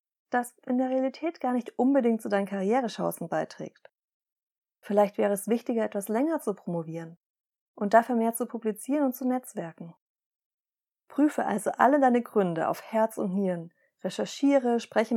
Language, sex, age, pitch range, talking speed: German, female, 30-49, 200-245 Hz, 150 wpm